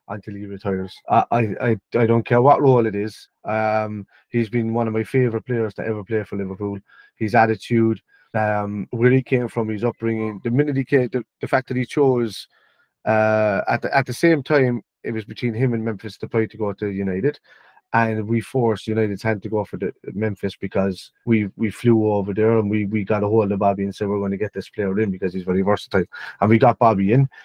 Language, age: English, 30-49